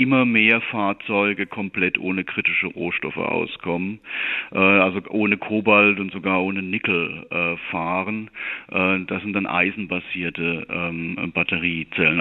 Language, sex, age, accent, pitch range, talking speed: German, male, 40-59, German, 95-105 Hz, 105 wpm